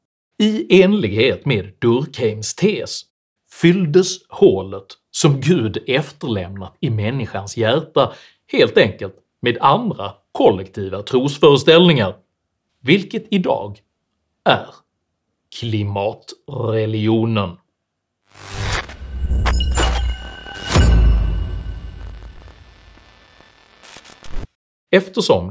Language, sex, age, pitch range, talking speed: Swedish, male, 30-49, 100-145 Hz, 55 wpm